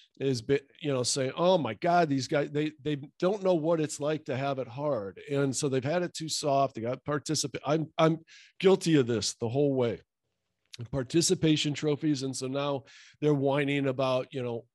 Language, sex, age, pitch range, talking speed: English, male, 50-69, 135-170 Hz, 195 wpm